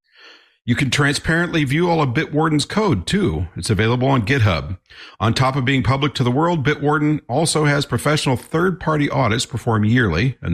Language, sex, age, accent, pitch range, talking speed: English, male, 50-69, American, 105-150 Hz, 170 wpm